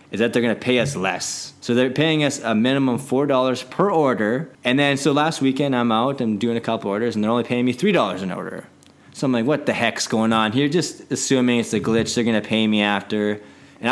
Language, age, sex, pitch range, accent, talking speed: English, 20-39, male, 105-135 Hz, American, 250 wpm